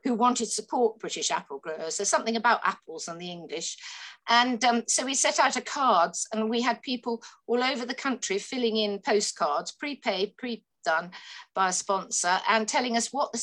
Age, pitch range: 50-69, 205-250 Hz